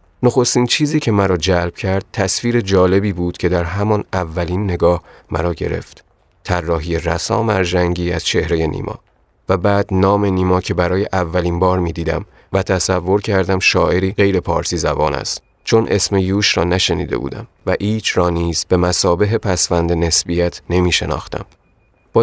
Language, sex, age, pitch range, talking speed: Persian, male, 30-49, 85-95 Hz, 155 wpm